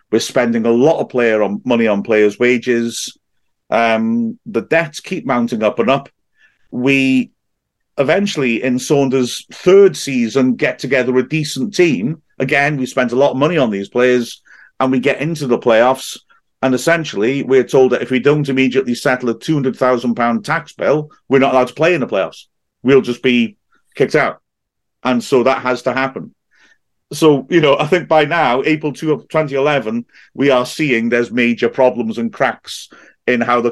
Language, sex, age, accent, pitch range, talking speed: English, male, 40-59, British, 115-140 Hz, 180 wpm